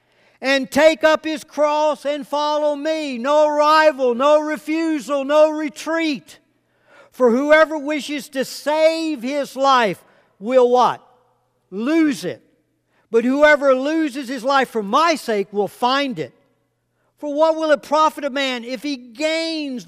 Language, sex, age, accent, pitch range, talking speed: English, male, 60-79, American, 220-305 Hz, 140 wpm